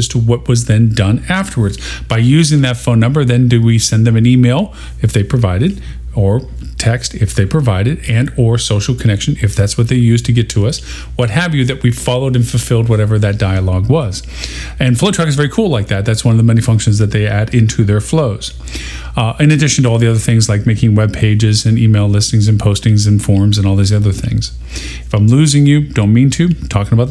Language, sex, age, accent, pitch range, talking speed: English, male, 40-59, American, 105-135 Hz, 230 wpm